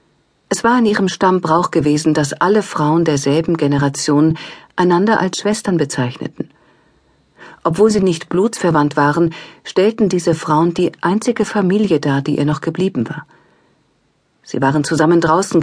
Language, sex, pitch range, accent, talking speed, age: German, female, 145-180 Hz, German, 140 wpm, 50-69